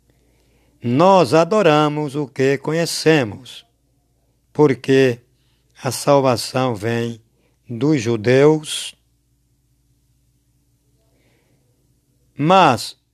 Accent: Brazilian